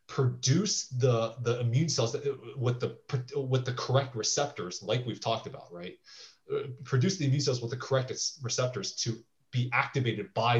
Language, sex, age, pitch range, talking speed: English, male, 20-39, 115-135 Hz, 175 wpm